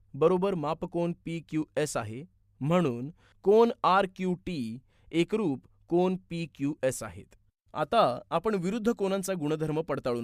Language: Marathi